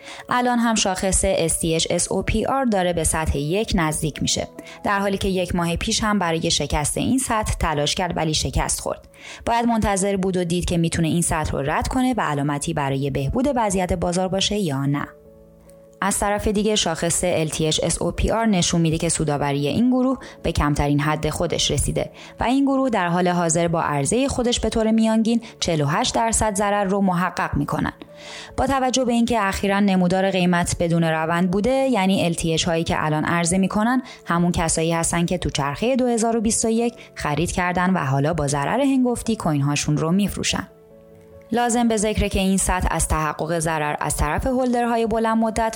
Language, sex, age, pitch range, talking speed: Persian, female, 20-39, 160-225 Hz, 170 wpm